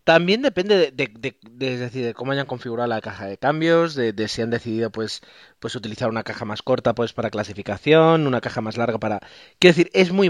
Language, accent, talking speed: Spanish, Spanish, 235 wpm